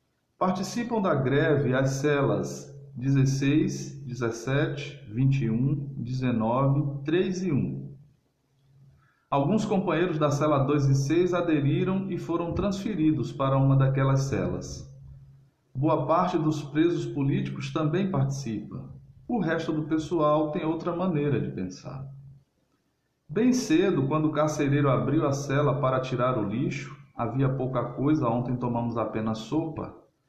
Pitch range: 135-165 Hz